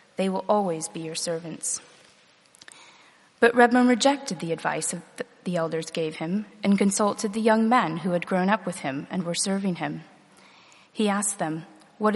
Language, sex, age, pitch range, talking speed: English, female, 30-49, 170-215 Hz, 170 wpm